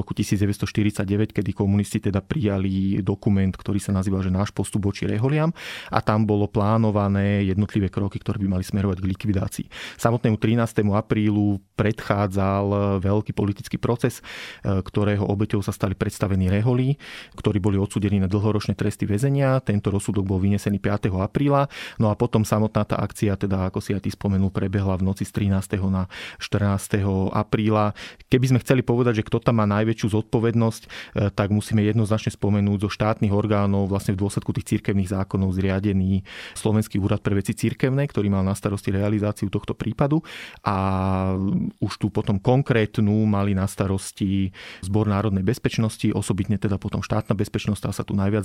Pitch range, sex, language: 100-110 Hz, male, Slovak